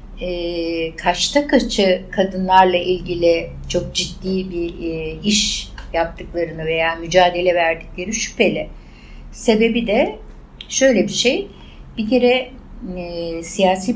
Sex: female